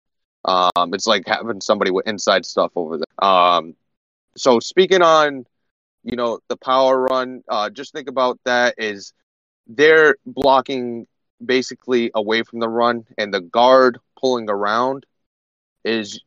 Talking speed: 140 wpm